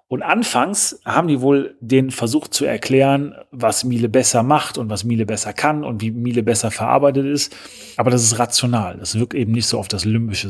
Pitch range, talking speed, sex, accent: 110-135 Hz, 205 wpm, male, German